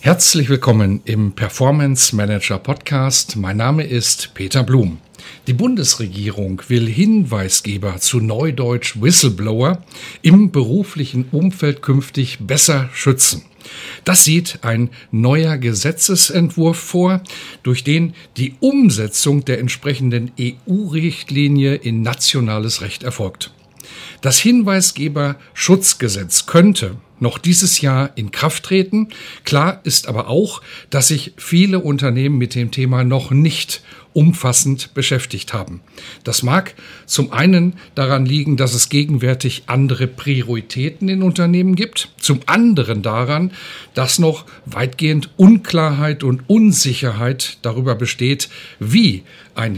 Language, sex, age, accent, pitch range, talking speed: German, male, 50-69, German, 120-165 Hz, 110 wpm